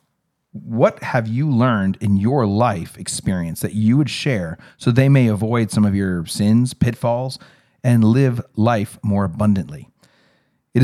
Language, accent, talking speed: English, American, 150 wpm